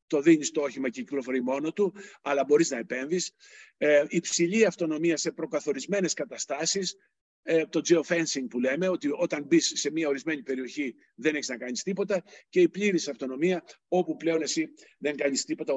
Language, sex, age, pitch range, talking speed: Greek, male, 50-69, 140-185 Hz, 165 wpm